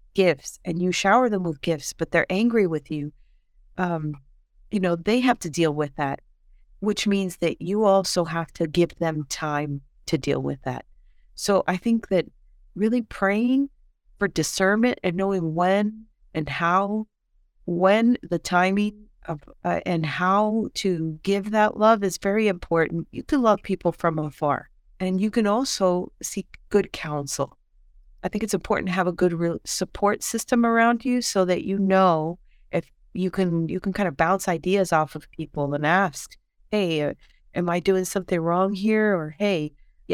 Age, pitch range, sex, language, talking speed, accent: 40-59, 165-205 Hz, female, English, 170 wpm, American